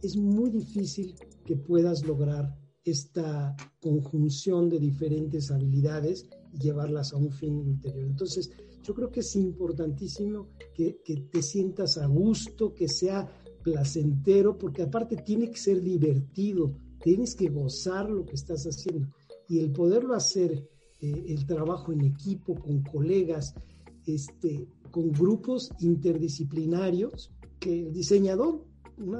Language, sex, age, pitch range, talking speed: Spanish, male, 50-69, 145-195 Hz, 130 wpm